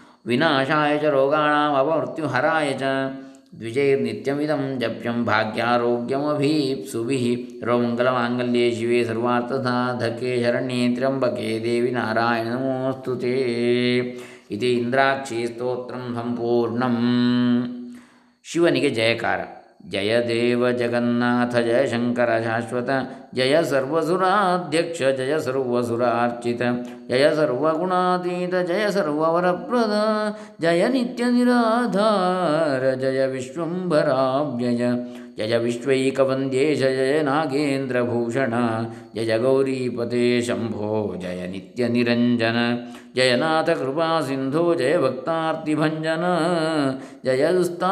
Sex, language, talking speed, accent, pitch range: male, Kannada, 70 wpm, native, 120-150 Hz